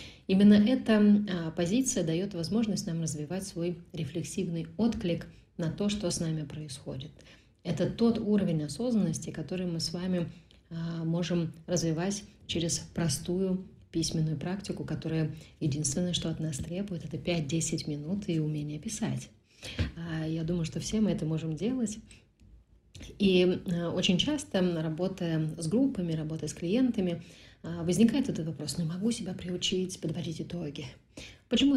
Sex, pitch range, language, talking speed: female, 155-190 Hz, Russian, 130 wpm